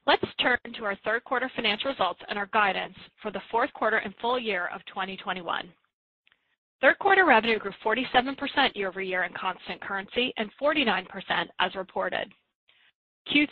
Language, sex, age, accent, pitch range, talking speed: English, female, 30-49, American, 195-245 Hz, 150 wpm